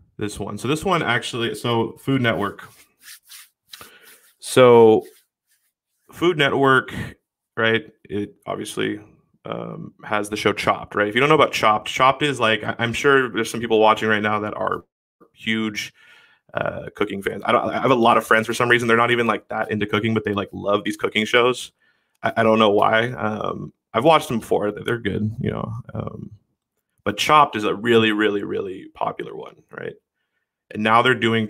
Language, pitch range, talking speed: English, 105-120 Hz, 185 wpm